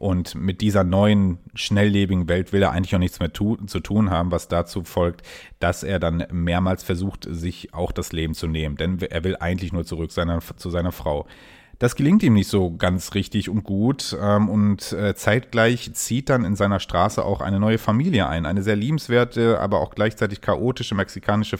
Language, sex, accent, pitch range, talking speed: German, male, German, 90-115 Hz, 190 wpm